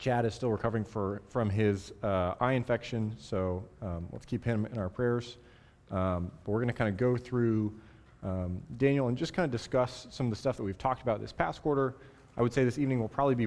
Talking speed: 230 wpm